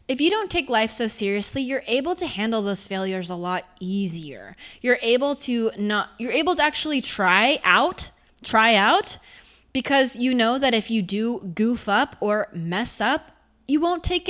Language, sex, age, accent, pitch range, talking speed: English, female, 20-39, American, 195-270 Hz, 180 wpm